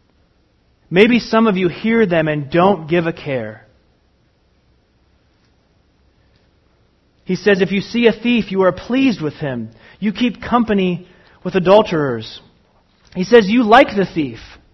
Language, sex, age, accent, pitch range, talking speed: English, male, 30-49, American, 155-220 Hz, 140 wpm